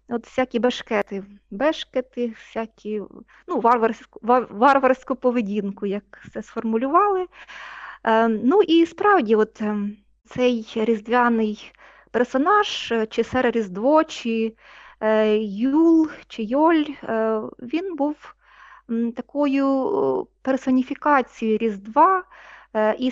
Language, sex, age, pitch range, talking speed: Ukrainian, female, 20-39, 225-275 Hz, 85 wpm